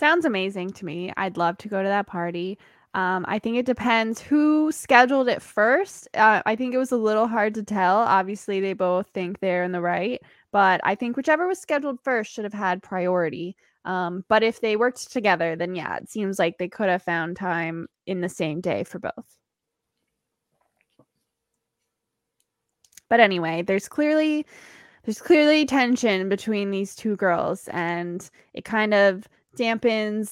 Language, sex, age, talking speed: English, female, 10-29, 170 wpm